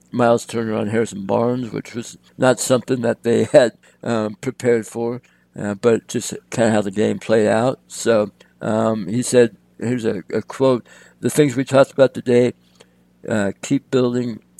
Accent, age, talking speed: American, 60-79, 175 wpm